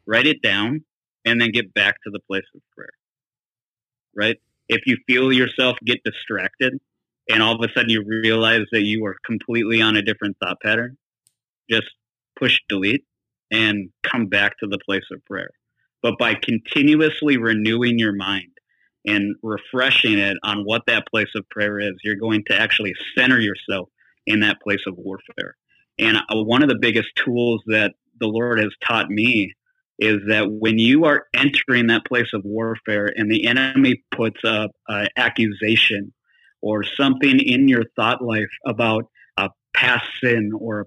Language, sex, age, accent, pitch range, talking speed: English, male, 30-49, American, 105-120 Hz, 165 wpm